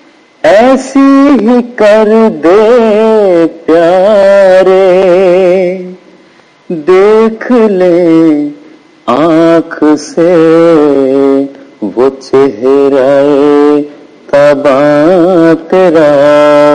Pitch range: 150-215 Hz